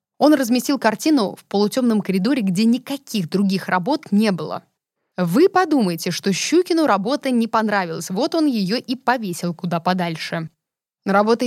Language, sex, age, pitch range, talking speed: Russian, female, 20-39, 185-245 Hz, 140 wpm